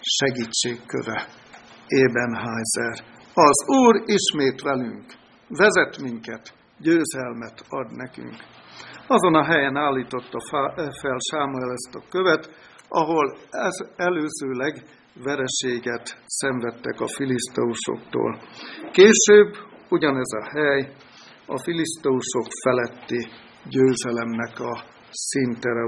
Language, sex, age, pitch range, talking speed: Hungarian, male, 60-79, 120-160 Hz, 85 wpm